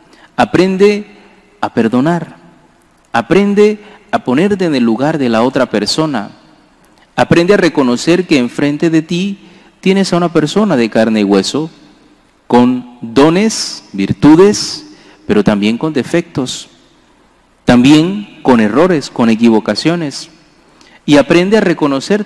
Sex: male